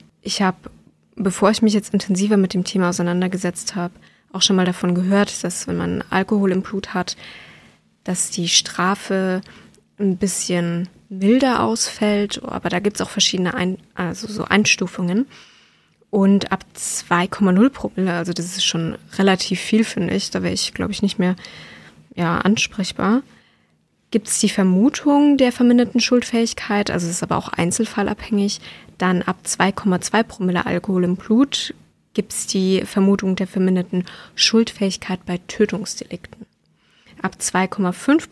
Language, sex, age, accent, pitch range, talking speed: German, female, 20-39, German, 180-220 Hz, 140 wpm